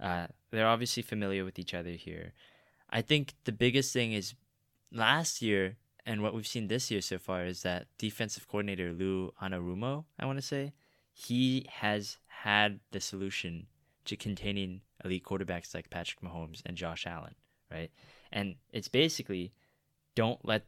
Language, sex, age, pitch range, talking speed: English, male, 20-39, 95-115 Hz, 160 wpm